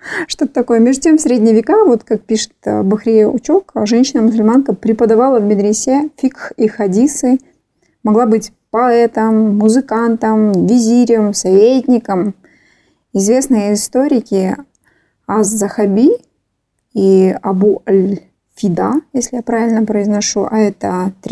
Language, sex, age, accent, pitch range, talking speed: Russian, female, 20-39, native, 195-240 Hz, 105 wpm